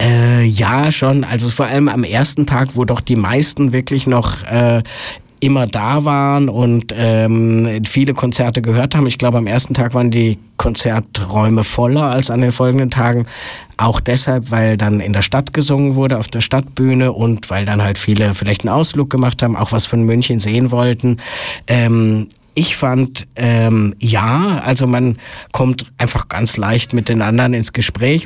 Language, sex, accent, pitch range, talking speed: German, male, German, 110-130 Hz, 175 wpm